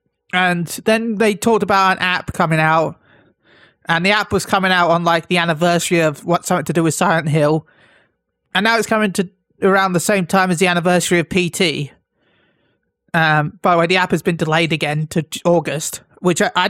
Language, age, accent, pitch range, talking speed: English, 30-49, British, 160-210 Hz, 200 wpm